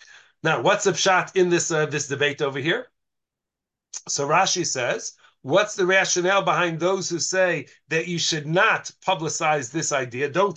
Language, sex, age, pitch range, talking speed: English, male, 40-59, 165-200 Hz, 165 wpm